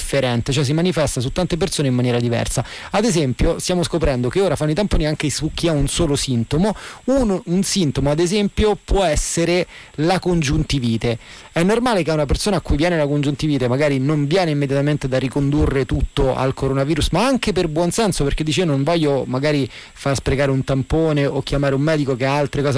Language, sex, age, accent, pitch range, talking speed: Italian, male, 30-49, native, 140-170 Hz, 200 wpm